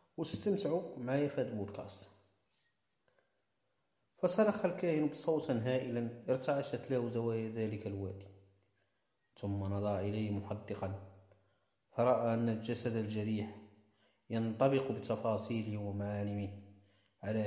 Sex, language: male, Arabic